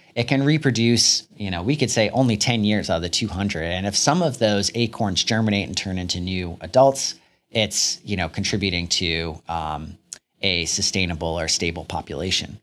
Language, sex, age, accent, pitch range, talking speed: English, male, 30-49, American, 100-130 Hz, 180 wpm